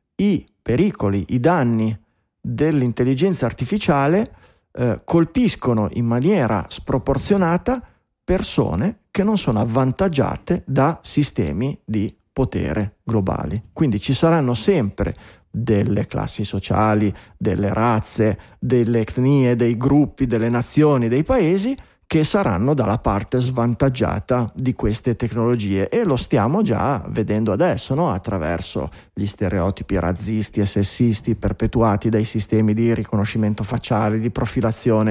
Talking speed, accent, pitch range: 115 wpm, native, 110-135 Hz